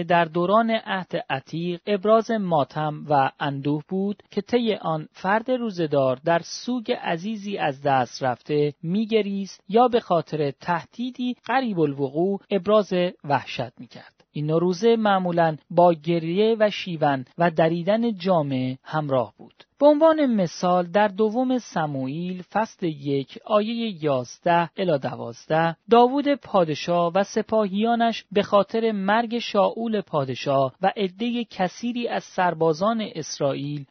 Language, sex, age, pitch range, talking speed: Persian, male, 40-59, 155-220 Hz, 120 wpm